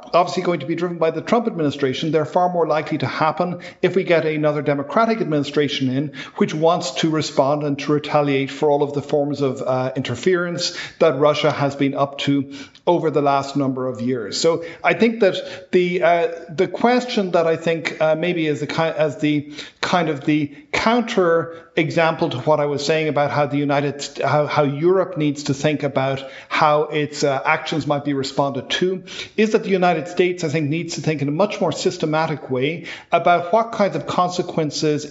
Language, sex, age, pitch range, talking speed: English, male, 50-69, 145-175 Hz, 200 wpm